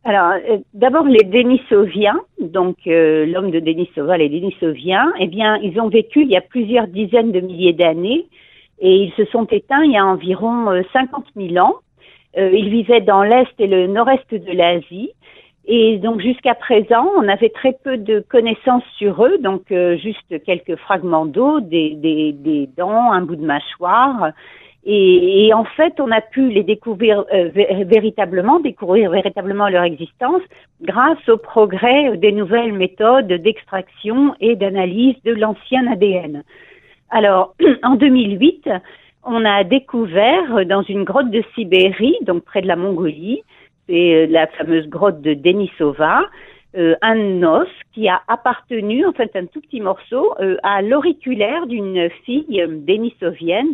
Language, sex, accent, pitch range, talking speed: French, female, French, 180-245 Hz, 160 wpm